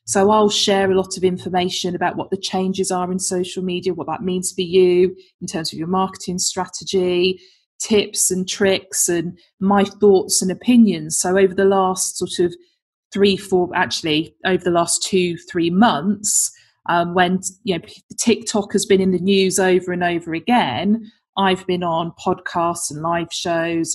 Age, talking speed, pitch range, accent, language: 20-39, 170 wpm, 175-205 Hz, British, English